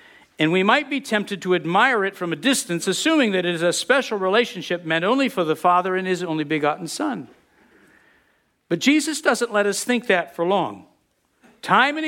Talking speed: 195 wpm